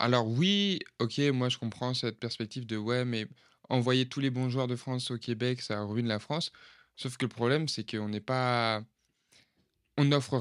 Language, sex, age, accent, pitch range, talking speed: French, male, 20-39, French, 110-125 Hz, 185 wpm